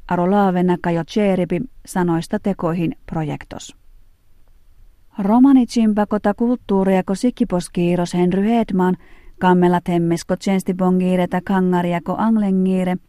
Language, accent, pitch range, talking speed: Finnish, native, 175-200 Hz, 80 wpm